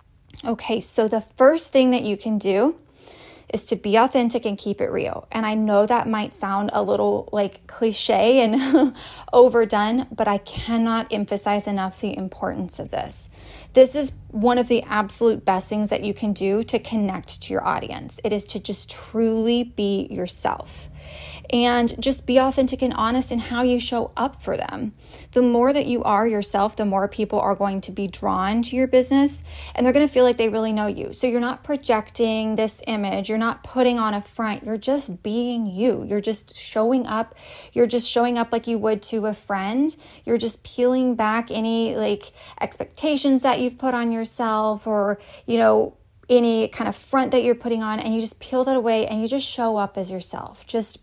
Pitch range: 210-250 Hz